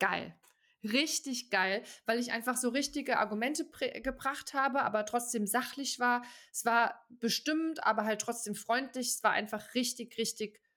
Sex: female